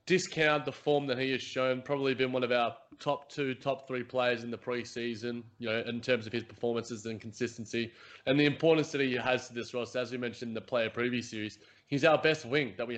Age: 20-39